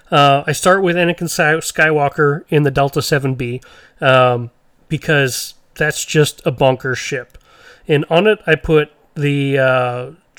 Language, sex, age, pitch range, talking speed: English, male, 30-49, 135-165 Hz, 140 wpm